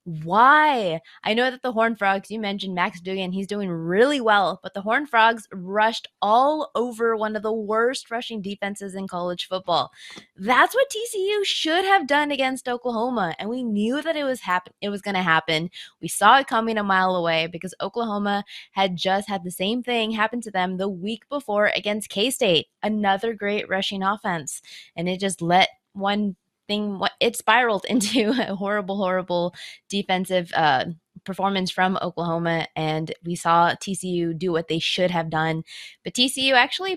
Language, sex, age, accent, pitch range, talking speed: English, female, 20-39, American, 185-240 Hz, 175 wpm